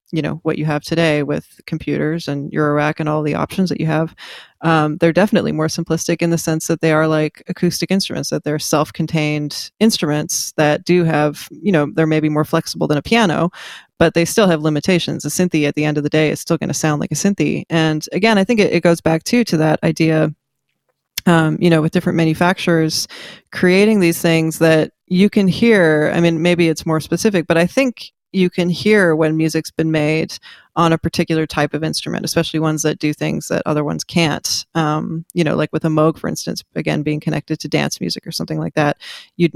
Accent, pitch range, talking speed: American, 155-175 Hz, 220 wpm